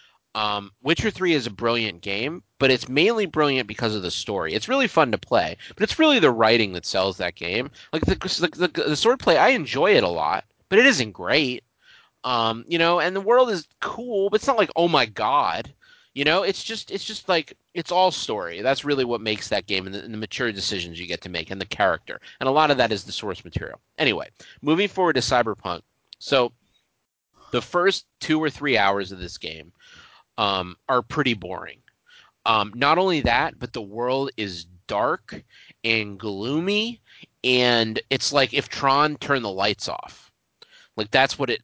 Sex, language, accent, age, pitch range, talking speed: male, English, American, 30-49, 100-155 Hz, 200 wpm